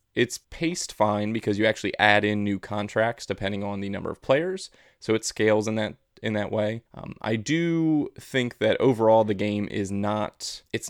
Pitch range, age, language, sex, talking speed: 100-120 Hz, 20-39, English, male, 185 wpm